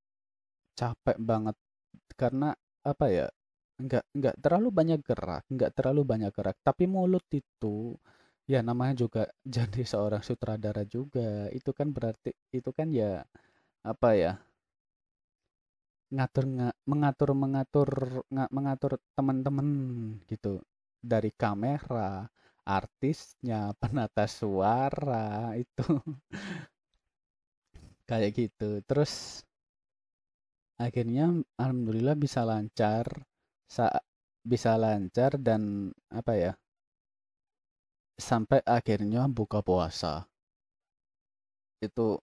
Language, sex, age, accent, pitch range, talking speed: Indonesian, male, 20-39, native, 105-130 Hz, 90 wpm